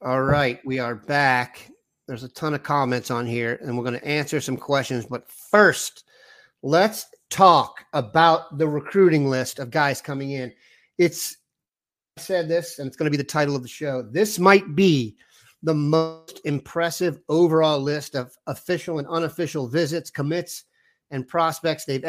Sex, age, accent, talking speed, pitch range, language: male, 40-59, American, 165 wpm, 135-170 Hz, English